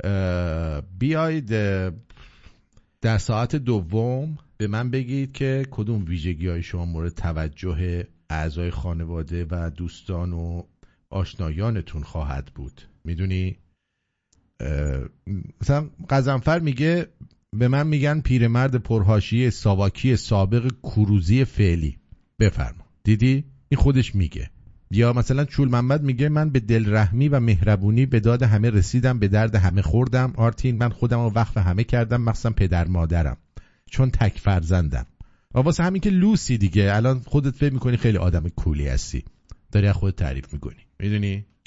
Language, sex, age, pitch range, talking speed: English, male, 50-69, 90-130 Hz, 125 wpm